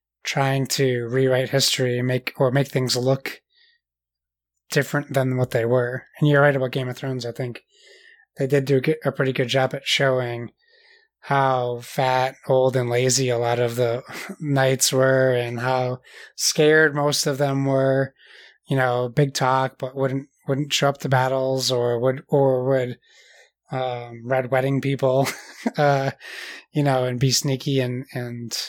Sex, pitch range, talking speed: male, 125-145 Hz, 165 wpm